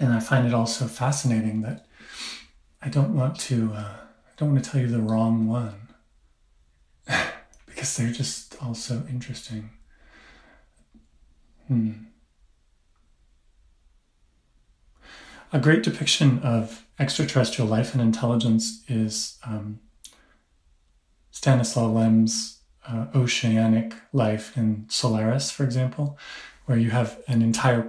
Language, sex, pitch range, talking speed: English, male, 110-125 Hz, 115 wpm